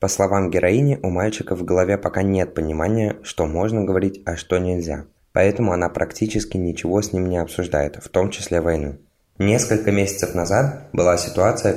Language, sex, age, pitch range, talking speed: Russian, male, 20-39, 85-100 Hz, 170 wpm